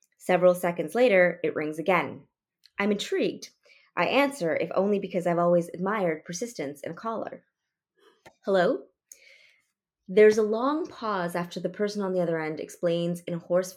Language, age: English, 20-39